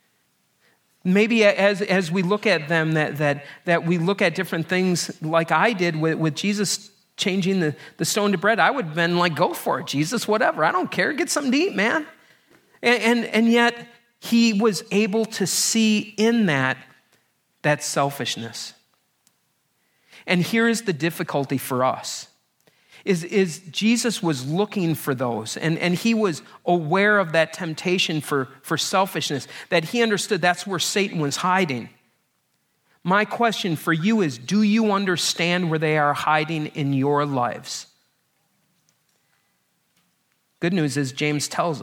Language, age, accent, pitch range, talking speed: English, 40-59, American, 155-205 Hz, 160 wpm